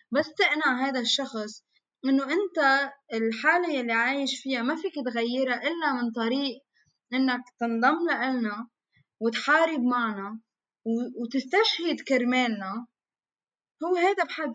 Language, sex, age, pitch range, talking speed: Arabic, female, 20-39, 225-295 Hz, 105 wpm